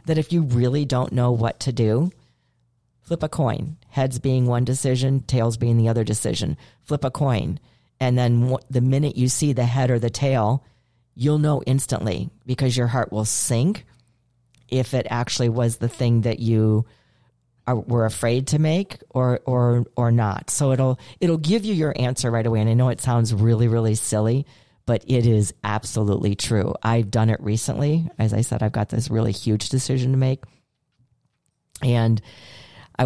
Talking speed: 180 wpm